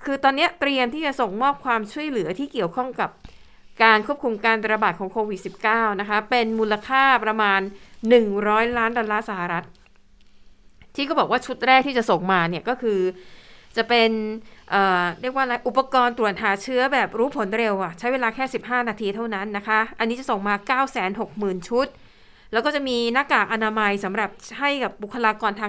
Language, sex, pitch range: Thai, female, 205-250 Hz